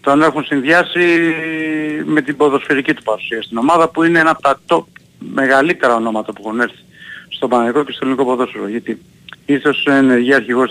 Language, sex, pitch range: Greek, male, 115-165 Hz